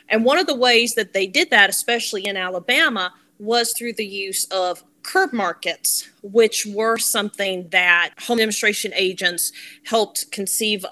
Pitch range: 185-225 Hz